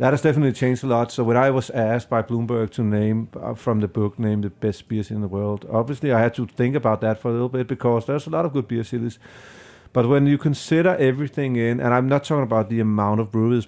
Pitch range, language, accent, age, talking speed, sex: 105-125 Hz, English, Danish, 40-59, 260 wpm, male